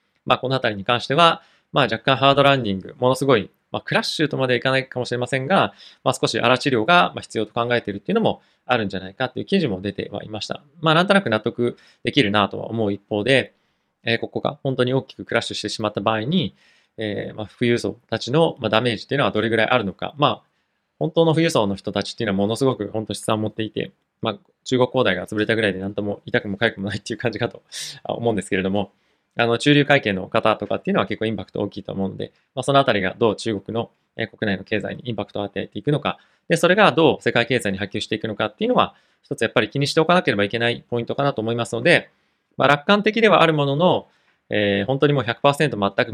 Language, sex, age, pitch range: Japanese, male, 20-39, 105-135 Hz